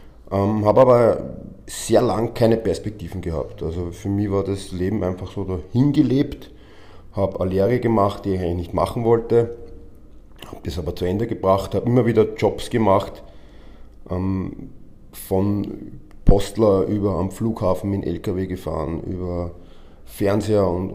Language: German